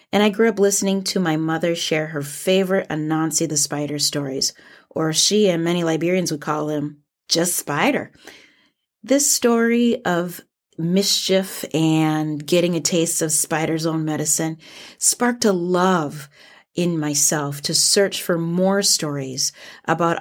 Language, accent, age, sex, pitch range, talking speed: English, American, 30-49, female, 160-210 Hz, 145 wpm